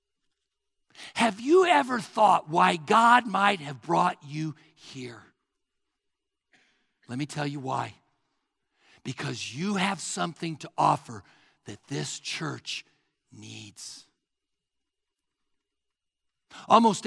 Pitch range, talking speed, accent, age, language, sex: 145-225 Hz, 95 wpm, American, 60-79, English, male